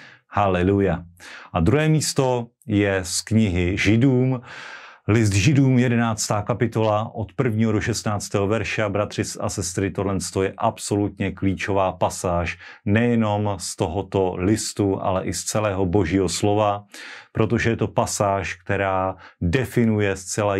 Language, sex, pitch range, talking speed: Slovak, male, 95-115 Hz, 120 wpm